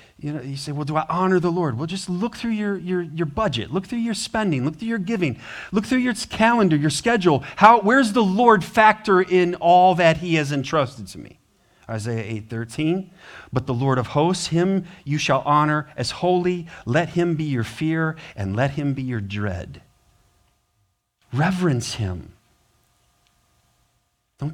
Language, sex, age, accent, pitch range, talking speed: English, male, 40-59, American, 130-190 Hz, 180 wpm